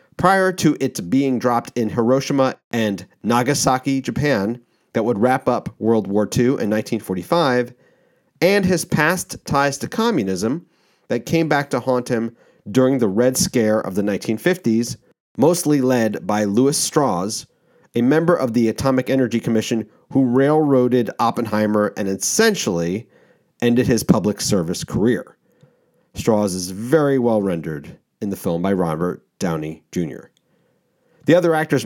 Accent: American